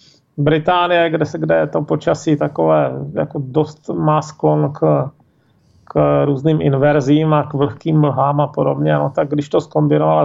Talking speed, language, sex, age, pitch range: 150 wpm, Czech, male, 40-59, 140-180 Hz